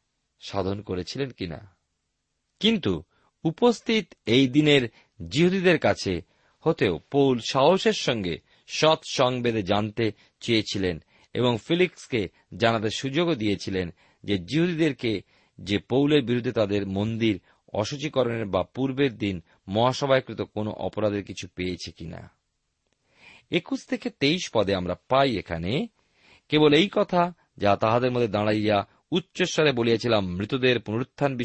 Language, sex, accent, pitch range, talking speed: Bengali, male, native, 100-140 Hz, 110 wpm